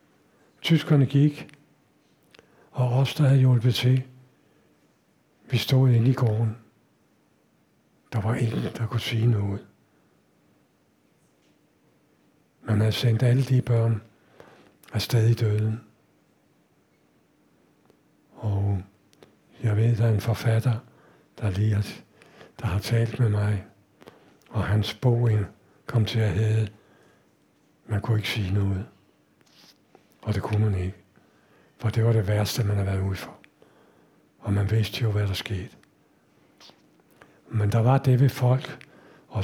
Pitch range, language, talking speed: 110-135 Hz, Danish, 130 wpm